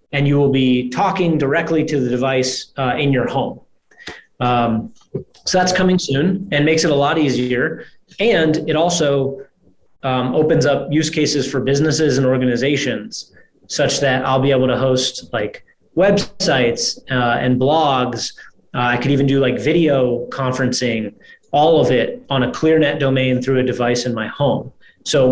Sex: male